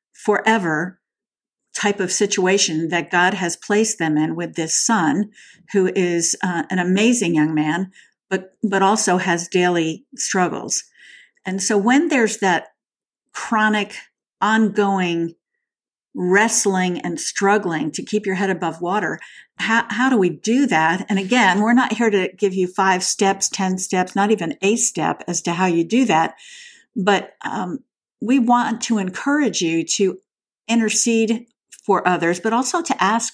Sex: female